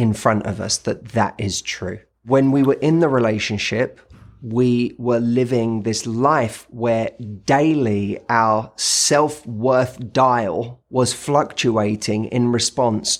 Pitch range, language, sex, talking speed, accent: 105-125 Hz, English, male, 125 wpm, British